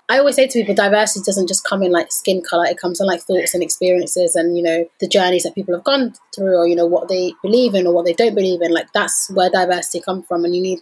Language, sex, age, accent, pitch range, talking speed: English, female, 20-39, British, 175-200 Hz, 290 wpm